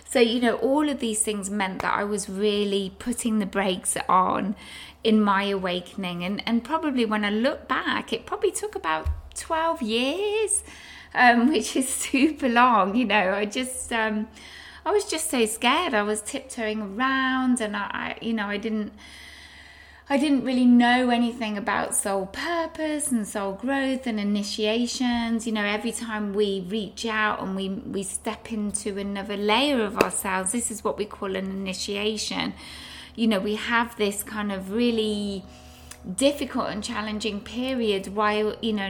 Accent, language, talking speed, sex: British, English, 170 wpm, female